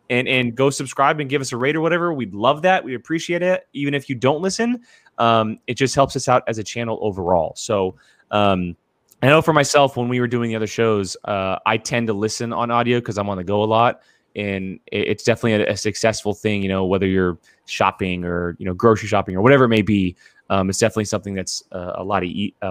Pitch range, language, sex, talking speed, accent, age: 105-145 Hz, English, male, 245 wpm, American, 20-39